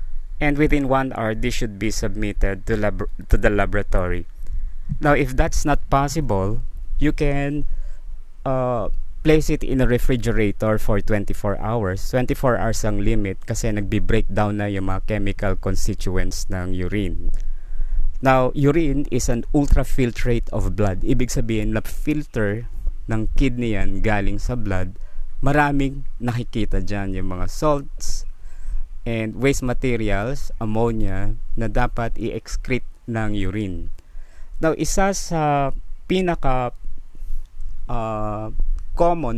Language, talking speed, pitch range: Filipino, 115 wpm, 95-130 Hz